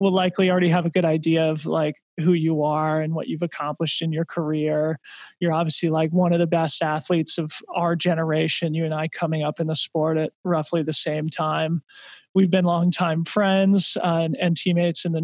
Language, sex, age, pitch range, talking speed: English, male, 20-39, 160-185 Hz, 210 wpm